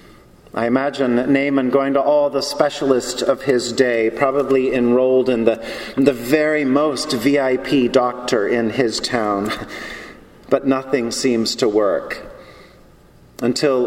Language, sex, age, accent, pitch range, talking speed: English, male, 40-59, American, 125-155 Hz, 130 wpm